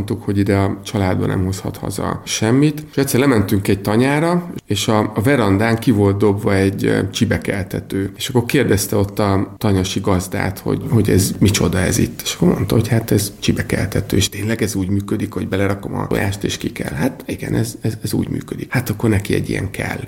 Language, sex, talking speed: Hungarian, male, 200 wpm